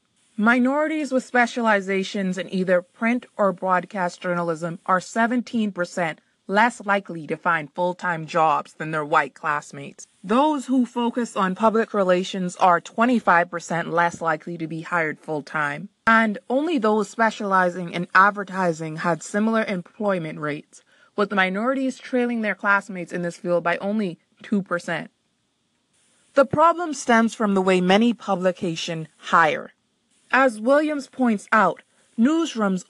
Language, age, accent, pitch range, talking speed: English, 20-39, American, 180-230 Hz, 130 wpm